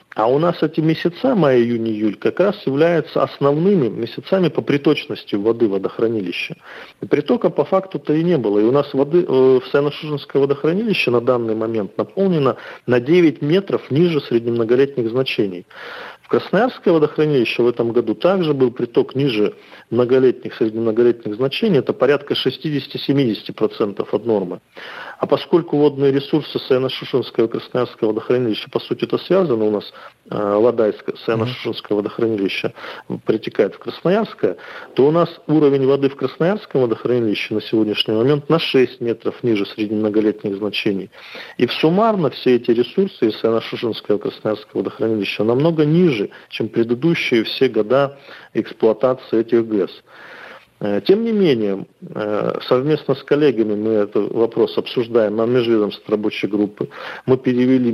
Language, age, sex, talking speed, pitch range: Russian, 40-59, male, 135 wpm, 110-155 Hz